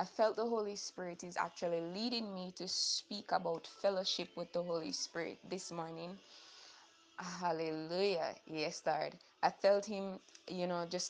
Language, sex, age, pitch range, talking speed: English, female, 20-39, 165-185 Hz, 150 wpm